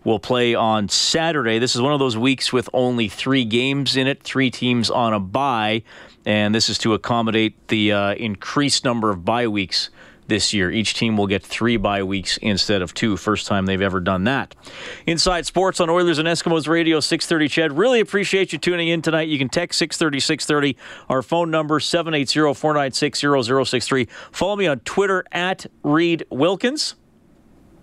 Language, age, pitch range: English, 40-59, 110-160 Hz